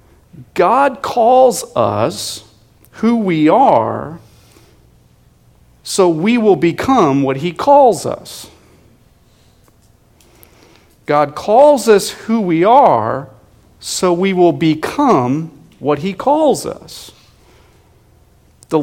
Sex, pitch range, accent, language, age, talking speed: male, 120-185 Hz, American, English, 50-69, 90 wpm